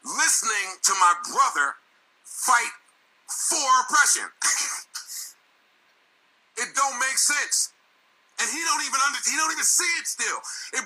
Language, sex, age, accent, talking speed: English, male, 50-69, American, 120 wpm